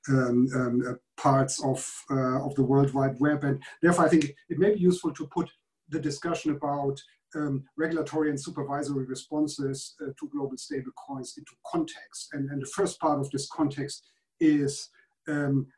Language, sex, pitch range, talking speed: English, male, 135-160 Hz, 175 wpm